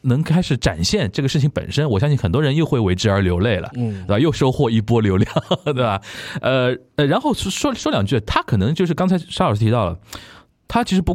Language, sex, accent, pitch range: Chinese, male, native, 100-150 Hz